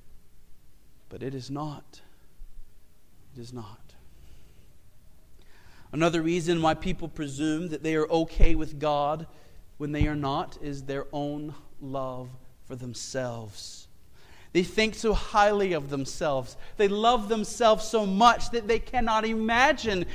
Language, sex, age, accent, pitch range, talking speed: English, male, 40-59, American, 130-200 Hz, 130 wpm